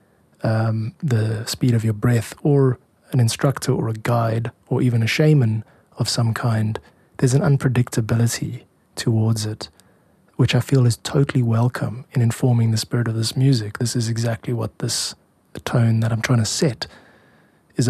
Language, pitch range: English, 110-130 Hz